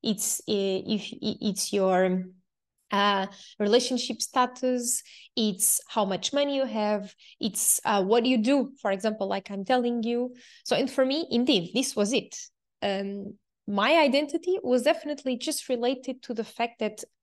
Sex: female